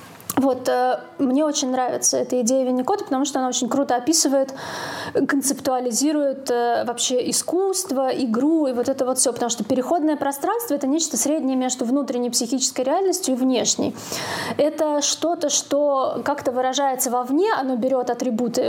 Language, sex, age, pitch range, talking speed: Russian, female, 20-39, 250-290 Hz, 140 wpm